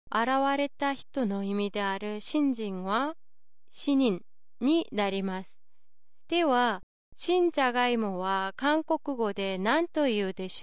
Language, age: Japanese, 30-49